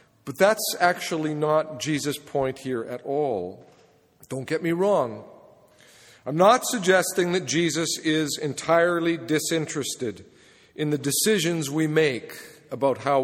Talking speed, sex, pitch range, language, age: 125 wpm, male, 145-180 Hz, English, 50-69